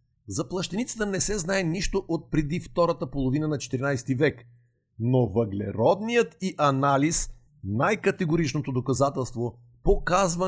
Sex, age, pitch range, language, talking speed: male, 50-69, 140-180 Hz, Bulgarian, 115 wpm